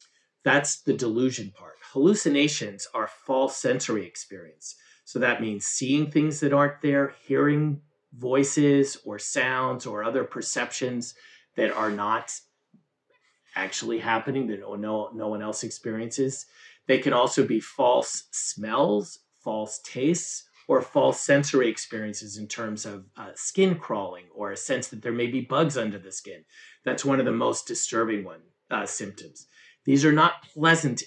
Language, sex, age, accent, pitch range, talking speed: English, male, 40-59, American, 110-145 Hz, 145 wpm